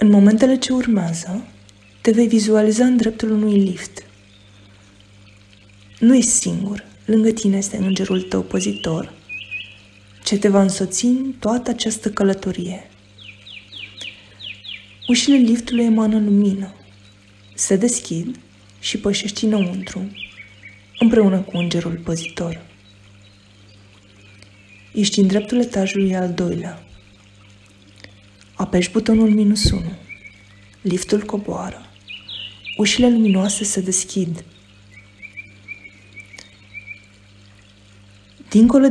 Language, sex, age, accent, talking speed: Romanian, female, 20-39, native, 90 wpm